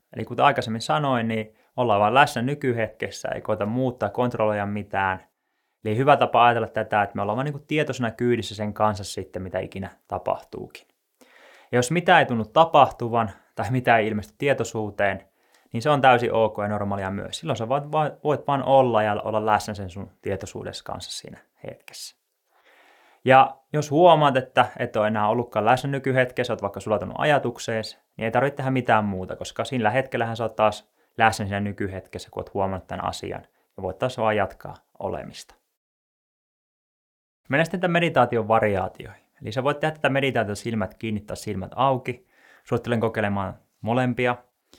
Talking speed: 165 wpm